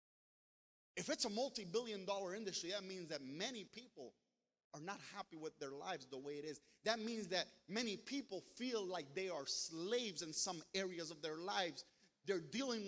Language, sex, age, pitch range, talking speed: English, male, 30-49, 185-235 Hz, 180 wpm